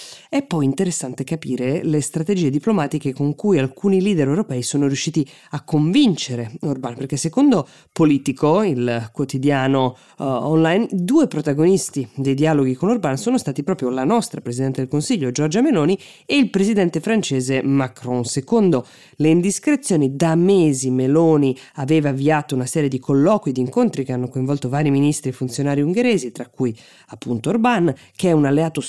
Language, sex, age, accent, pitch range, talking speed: Italian, female, 20-39, native, 130-165 Hz, 160 wpm